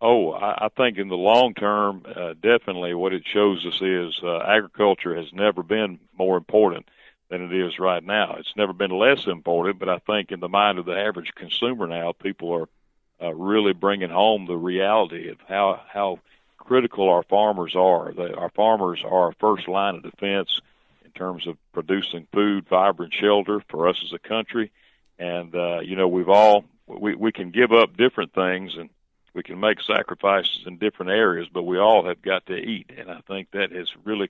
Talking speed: 195 wpm